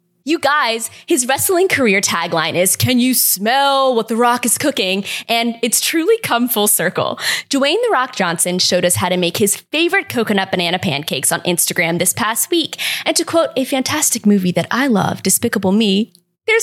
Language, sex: English, female